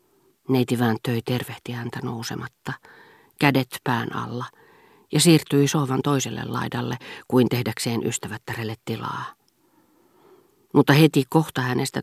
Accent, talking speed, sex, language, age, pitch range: native, 100 wpm, female, Finnish, 40-59, 125-155 Hz